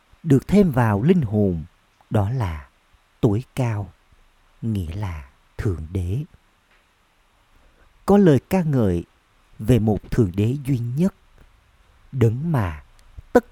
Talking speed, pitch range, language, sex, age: 115 wpm, 95-130 Hz, Vietnamese, male, 50-69